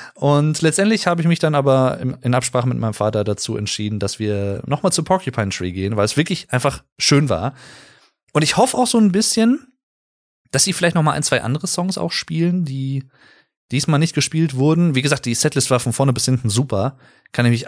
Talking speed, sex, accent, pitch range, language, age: 210 wpm, male, German, 110-150 Hz, German, 20-39